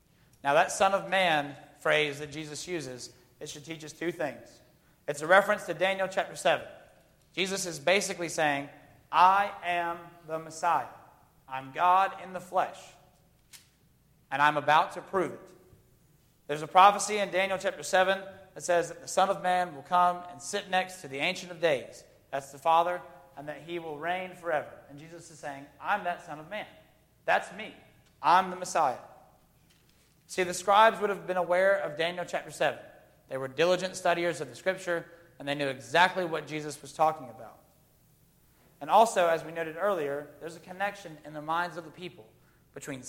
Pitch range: 150-185 Hz